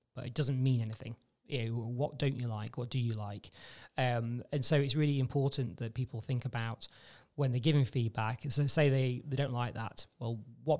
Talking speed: 200 wpm